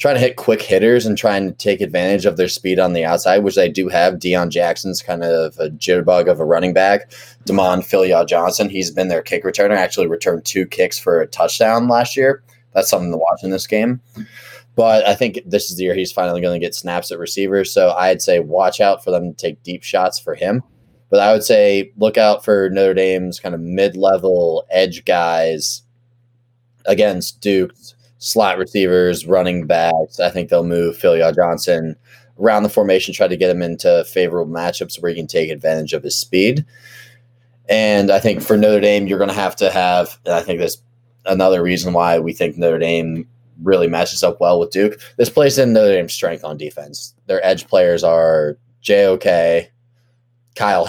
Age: 20-39